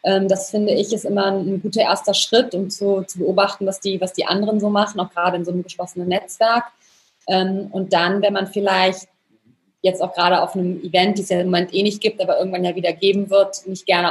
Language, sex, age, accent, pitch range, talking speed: German, female, 20-39, German, 175-195 Hz, 230 wpm